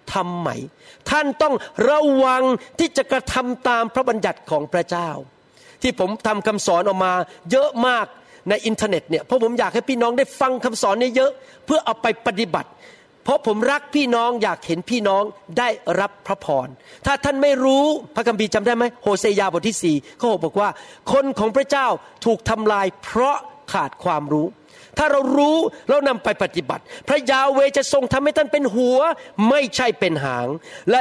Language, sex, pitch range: Thai, male, 190-260 Hz